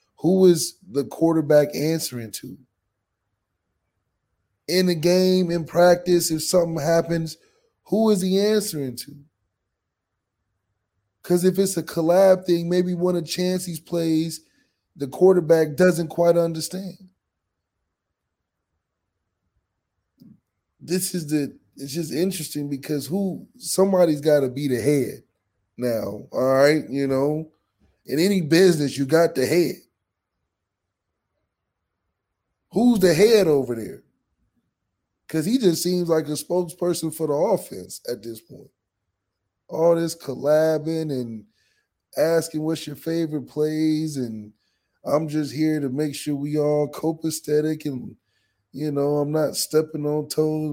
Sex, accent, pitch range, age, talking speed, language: male, American, 105-165 Hz, 20-39, 130 wpm, English